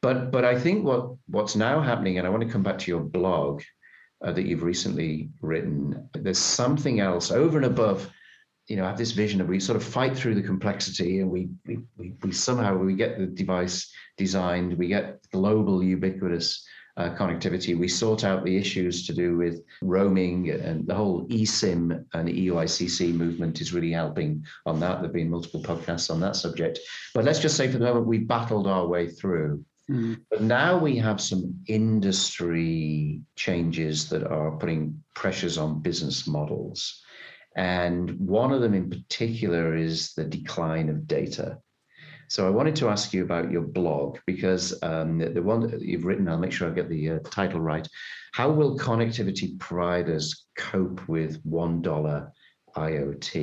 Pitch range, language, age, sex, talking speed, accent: 85-110 Hz, English, 50-69, male, 175 wpm, British